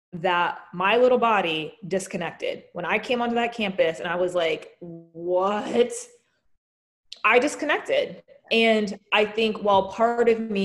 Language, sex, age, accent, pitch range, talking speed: English, female, 20-39, American, 175-220 Hz, 140 wpm